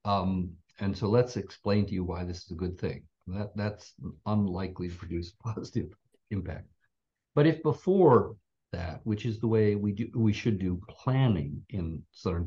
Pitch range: 90-105 Hz